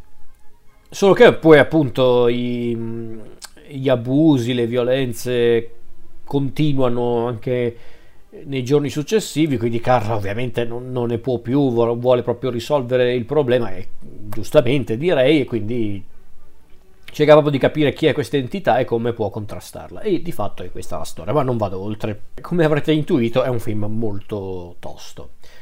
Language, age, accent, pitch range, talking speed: Italian, 40-59, native, 115-140 Hz, 145 wpm